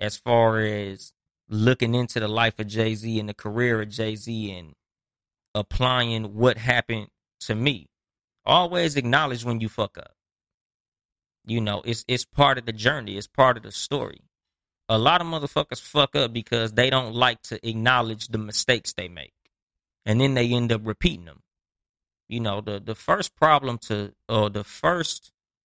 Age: 20-39